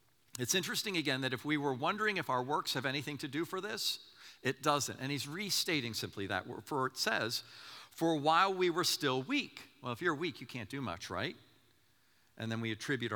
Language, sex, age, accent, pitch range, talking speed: English, male, 50-69, American, 105-145 Hz, 210 wpm